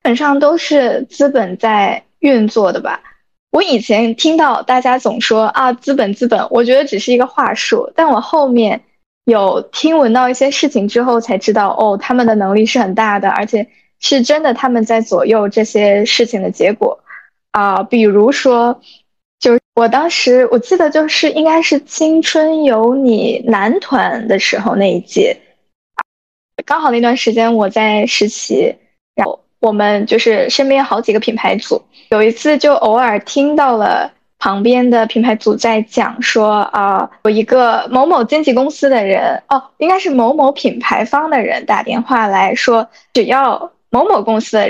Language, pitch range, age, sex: Chinese, 220-285 Hz, 10-29, female